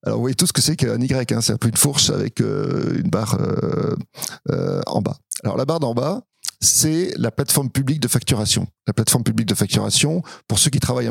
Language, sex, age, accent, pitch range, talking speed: French, male, 40-59, French, 115-145 Hz, 230 wpm